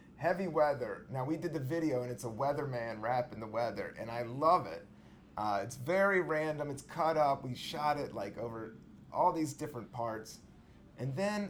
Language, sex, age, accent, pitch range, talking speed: English, male, 30-49, American, 115-160 Hz, 190 wpm